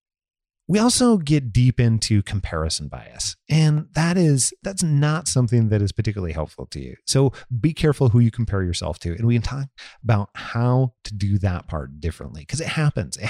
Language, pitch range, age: English, 90-130 Hz, 30-49